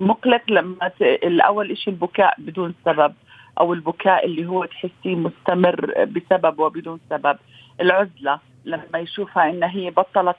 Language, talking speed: Arabic, 135 wpm